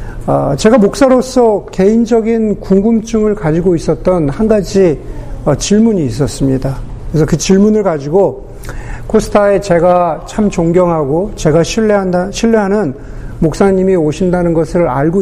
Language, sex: Korean, male